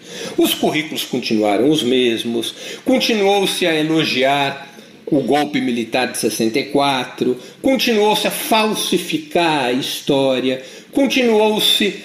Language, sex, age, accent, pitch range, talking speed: Portuguese, male, 50-69, Brazilian, 145-185 Hz, 95 wpm